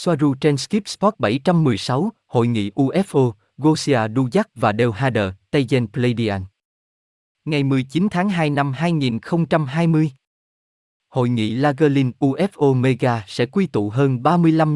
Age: 20-39